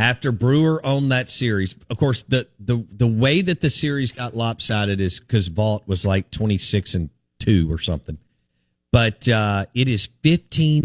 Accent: American